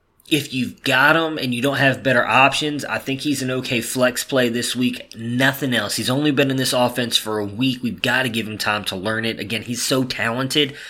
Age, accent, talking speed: 20-39, American, 235 wpm